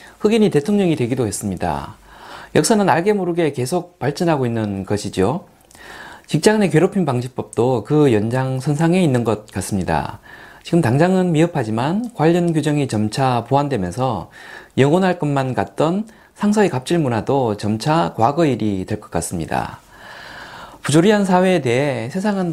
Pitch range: 120-175 Hz